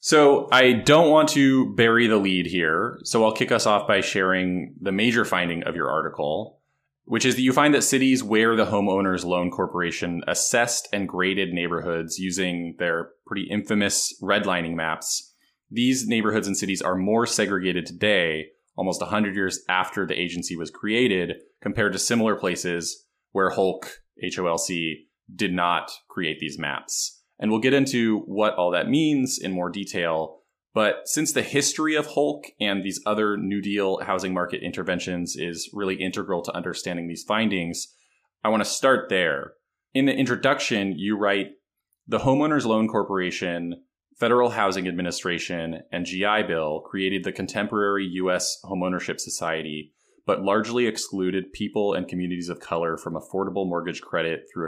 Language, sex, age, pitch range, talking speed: English, male, 20-39, 90-110 Hz, 160 wpm